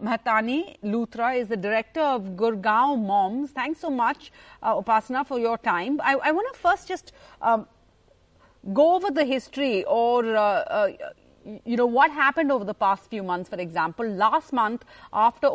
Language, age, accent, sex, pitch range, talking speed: English, 40-59, Indian, female, 230-305 Hz, 170 wpm